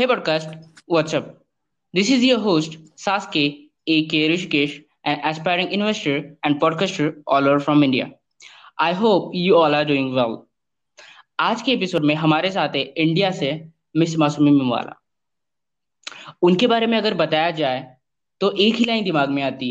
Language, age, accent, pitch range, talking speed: Hindi, 20-39, native, 150-190 Hz, 150 wpm